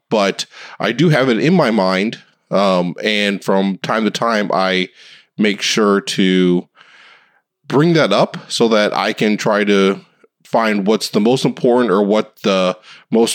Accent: American